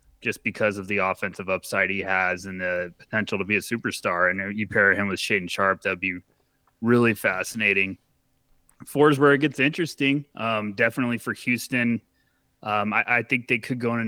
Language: English